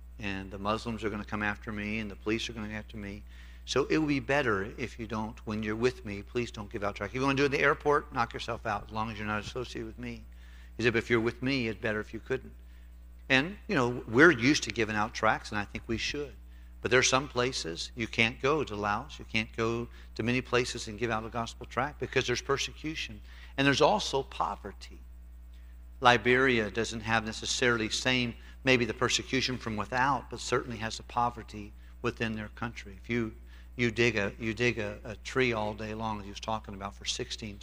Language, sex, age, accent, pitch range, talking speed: English, male, 50-69, American, 100-120 Hz, 235 wpm